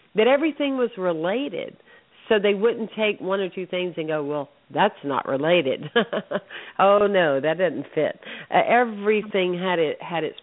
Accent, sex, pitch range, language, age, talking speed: American, female, 155-210 Hz, English, 50-69, 165 wpm